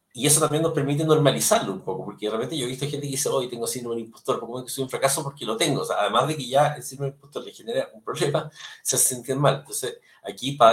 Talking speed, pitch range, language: 285 wpm, 125-155 Hz, Spanish